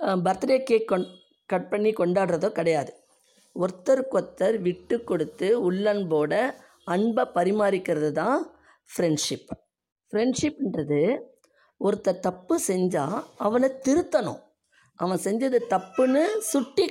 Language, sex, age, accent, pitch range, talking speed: Tamil, female, 20-39, native, 170-240 Hz, 90 wpm